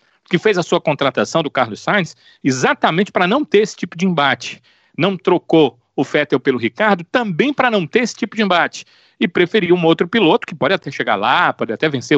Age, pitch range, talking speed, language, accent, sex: 40-59, 125-175 Hz, 210 wpm, Portuguese, Brazilian, male